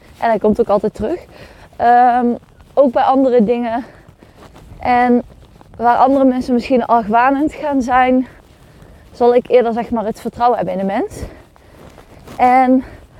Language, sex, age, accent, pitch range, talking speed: Dutch, female, 20-39, Dutch, 220-260 Hz, 140 wpm